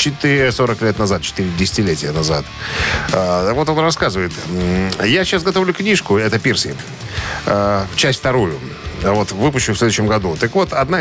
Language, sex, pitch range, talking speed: Russian, male, 100-135 Hz, 135 wpm